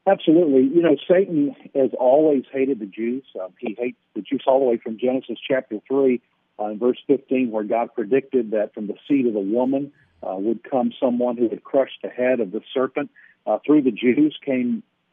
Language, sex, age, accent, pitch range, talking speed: English, male, 50-69, American, 115-140 Hz, 210 wpm